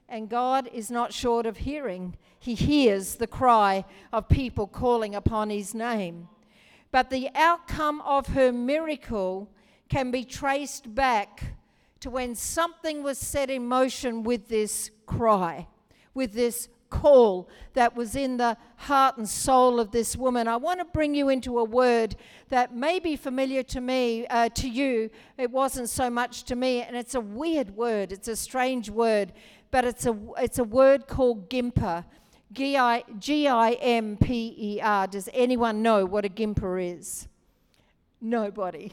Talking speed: 155 wpm